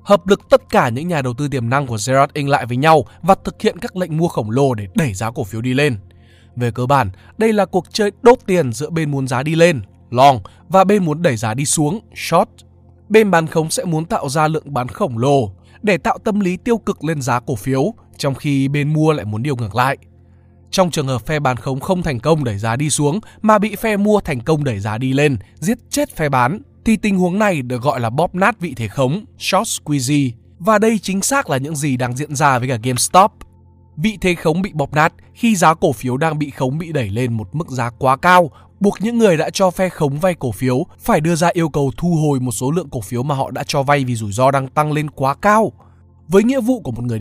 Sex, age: male, 20-39